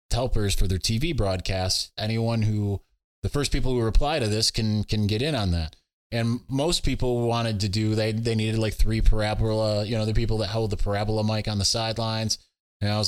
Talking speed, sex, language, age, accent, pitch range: 215 wpm, male, English, 20-39, American, 100-120 Hz